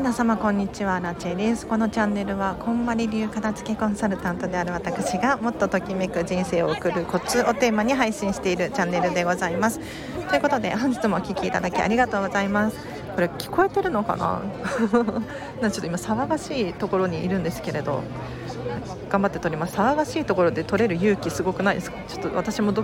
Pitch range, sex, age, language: 175-220 Hz, female, 40-59, Japanese